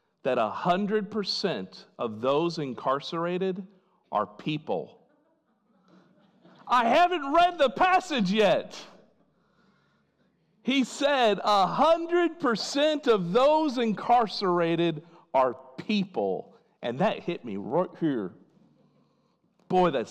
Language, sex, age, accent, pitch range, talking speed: English, male, 50-69, American, 130-215 Hz, 85 wpm